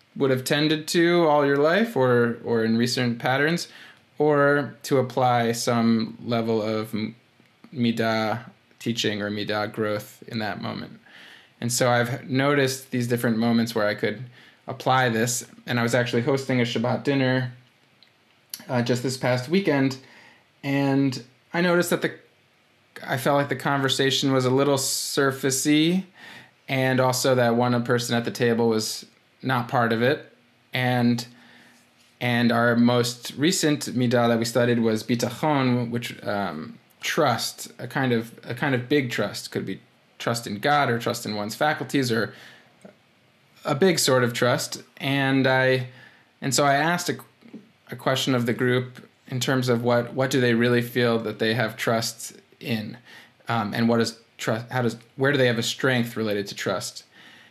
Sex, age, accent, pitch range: male, 20-39, American, 115-135 Hz